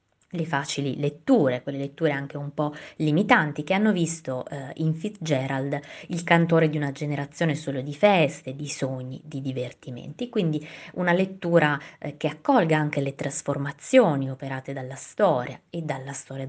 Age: 20-39